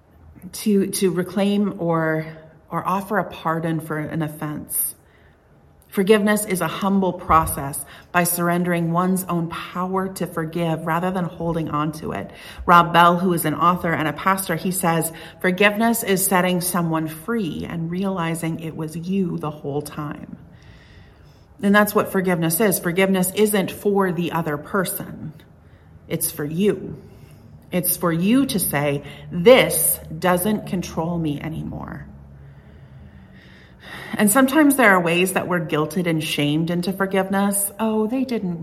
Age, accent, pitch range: 40-59, American, 160-210 Hz